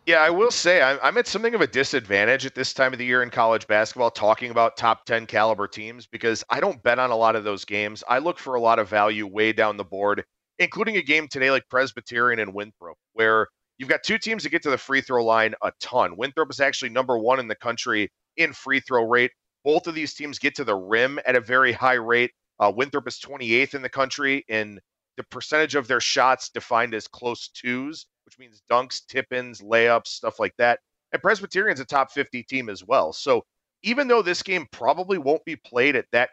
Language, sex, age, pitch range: English, male, 40-59, 115-145 Hz